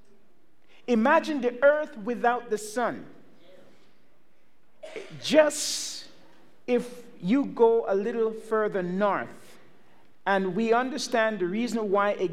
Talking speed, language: 100 wpm, English